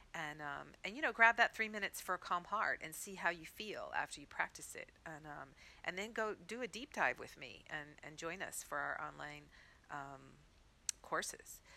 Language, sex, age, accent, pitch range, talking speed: English, female, 50-69, American, 150-185 Hz, 215 wpm